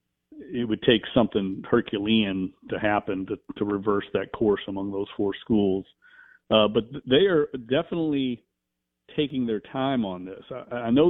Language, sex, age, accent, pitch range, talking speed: English, male, 50-69, American, 105-125 Hz, 155 wpm